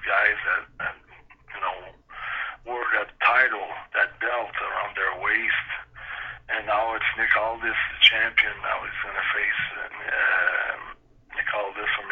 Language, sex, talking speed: English, male, 135 wpm